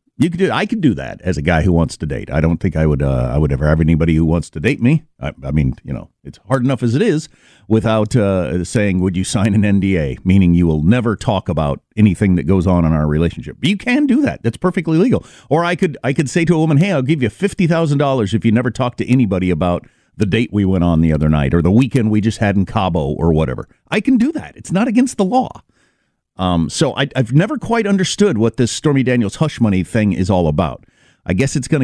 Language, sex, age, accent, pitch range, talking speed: English, male, 50-69, American, 95-155 Hz, 260 wpm